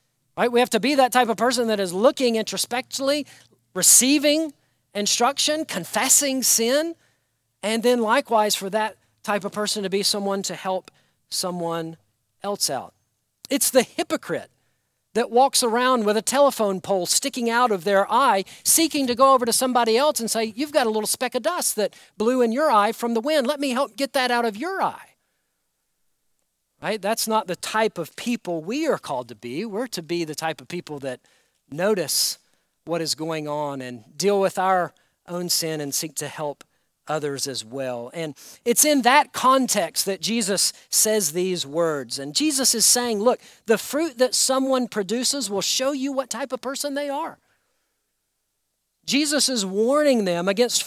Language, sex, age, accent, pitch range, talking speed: English, male, 50-69, American, 180-260 Hz, 180 wpm